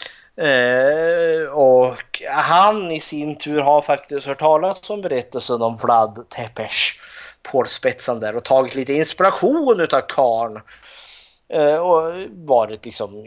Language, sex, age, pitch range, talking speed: Swedish, male, 20-39, 115-150 Hz, 120 wpm